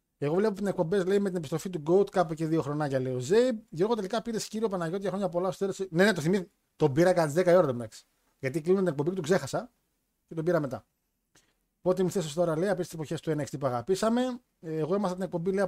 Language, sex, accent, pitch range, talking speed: Greek, male, native, 160-195 Hz, 250 wpm